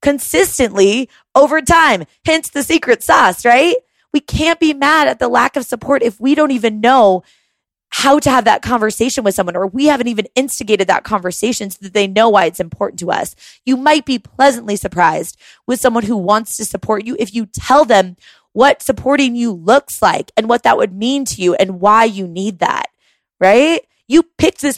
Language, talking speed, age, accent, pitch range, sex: English, 200 wpm, 20-39, American, 220-285 Hz, female